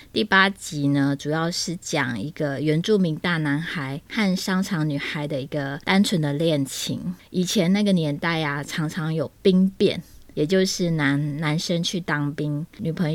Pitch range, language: 145-185 Hz, Chinese